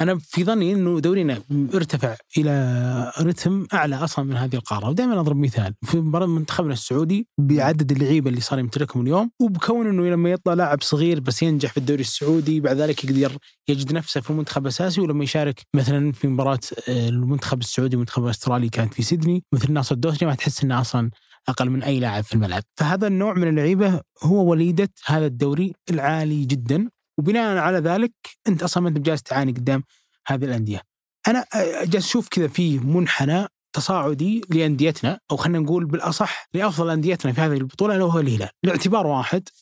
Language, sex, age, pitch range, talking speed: Arabic, male, 20-39, 130-175 Hz, 175 wpm